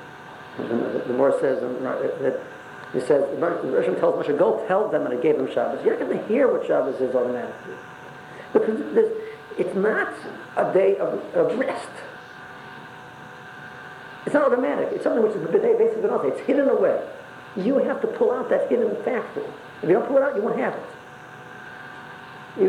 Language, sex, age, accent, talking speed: English, male, 50-69, American, 190 wpm